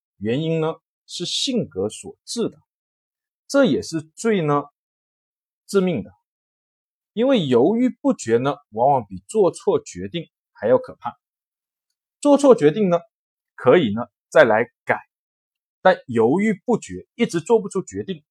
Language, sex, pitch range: Chinese, male, 145-230 Hz